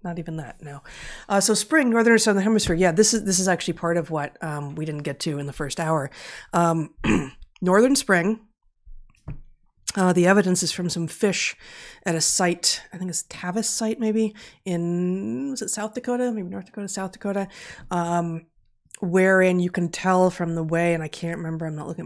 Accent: American